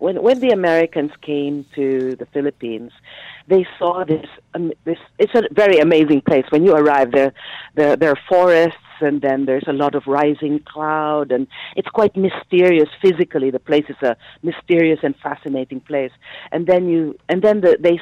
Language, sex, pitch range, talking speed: English, female, 150-210 Hz, 180 wpm